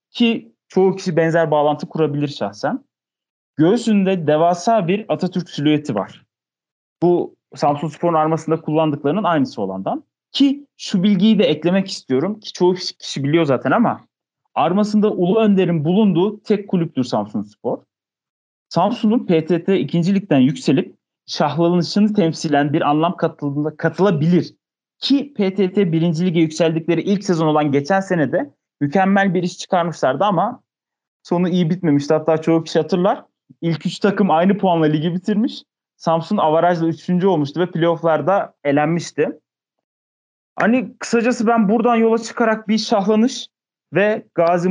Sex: male